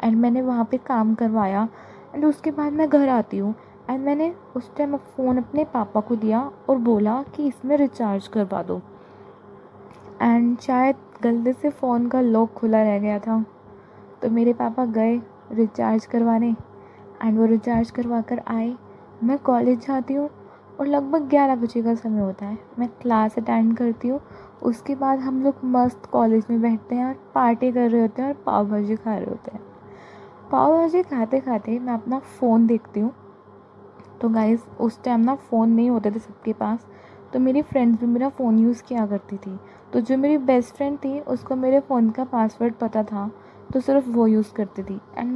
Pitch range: 220-265 Hz